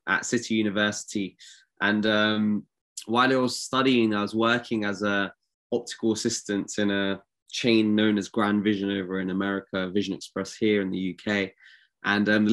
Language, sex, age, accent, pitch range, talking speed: English, male, 20-39, British, 105-125 Hz, 165 wpm